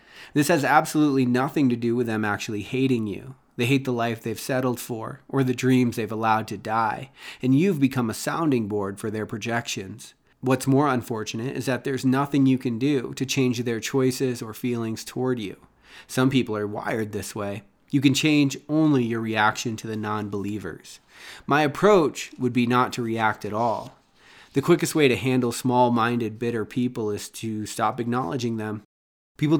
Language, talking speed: English, 180 wpm